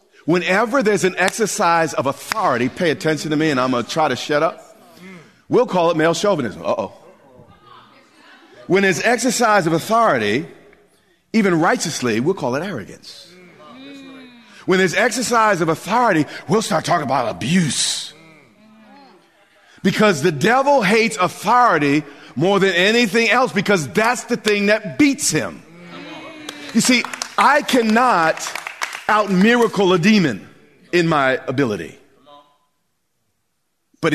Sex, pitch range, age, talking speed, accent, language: male, 170-240 Hz, 40-59, 130 wpm, American, English